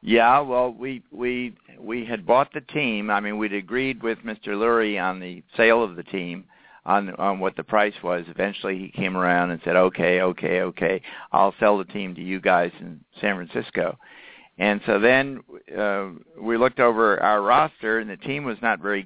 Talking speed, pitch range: 195 wpm, 90-115 Hz